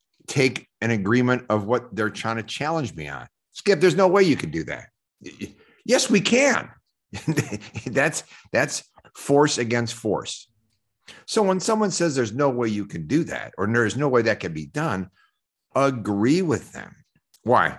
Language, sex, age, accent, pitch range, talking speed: English, male, 50-69, American, 95-130 Hz, 170 wpm